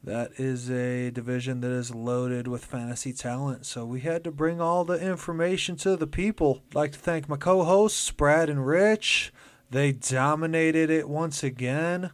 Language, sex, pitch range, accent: English, male, 125-145 Hz, American